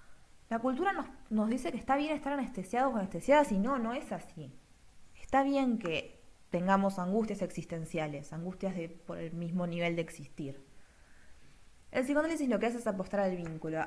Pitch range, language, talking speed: 180-230 Hz, Spanish, 175 wpm